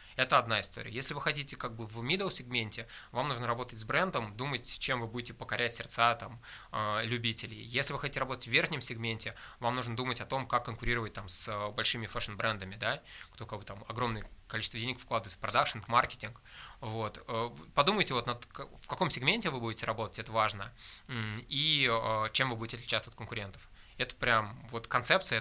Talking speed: 190 wpm